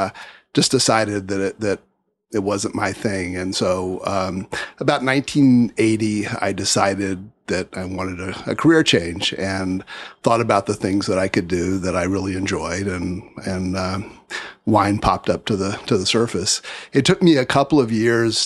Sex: male